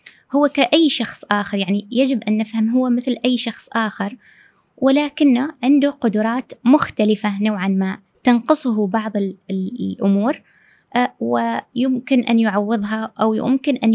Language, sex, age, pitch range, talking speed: Arabic, female, 20-39, 205-245 Hz, 120 wpm